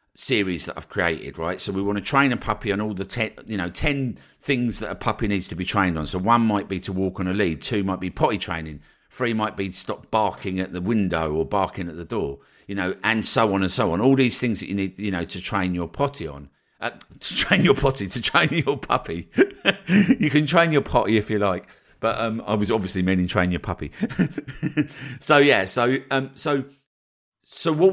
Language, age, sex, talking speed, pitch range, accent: English, 50-69, male, 235 wpm, 95-135 Hz, British